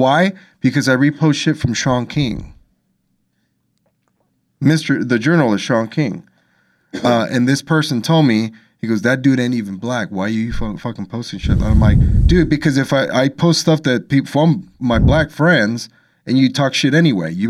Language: English